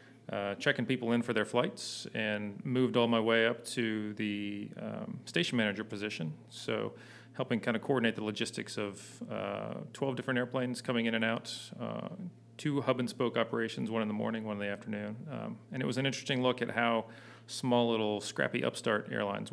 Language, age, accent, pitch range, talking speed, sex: English, 40-59, American, 110-125 Hz, 185 wpm, male